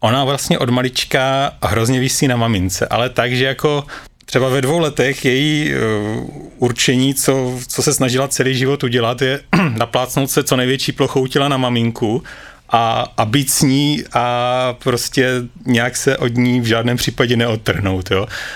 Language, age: Czech, 30-49